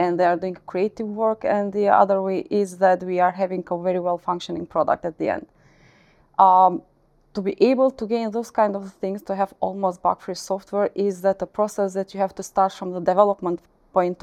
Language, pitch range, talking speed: English, 185-205 Hz, 220 wpm